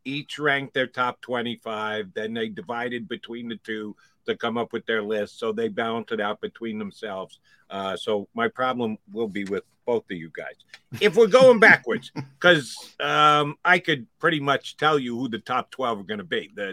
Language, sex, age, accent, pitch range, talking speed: English, male, 50-69, American, 125-170 Hz, 200 wpm